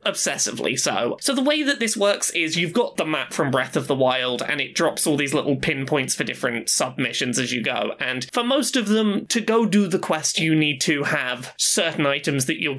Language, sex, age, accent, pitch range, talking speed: English, male, 20-39, British, 140-215 Hz, 235 wpm